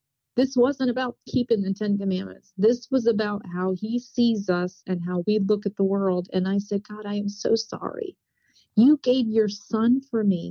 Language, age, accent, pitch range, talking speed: English, 50-69, American, 195-250 Hz, 200 wpm